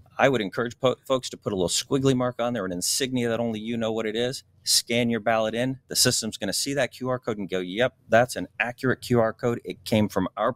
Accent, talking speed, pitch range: American, 250 wpm, 95-120 Hz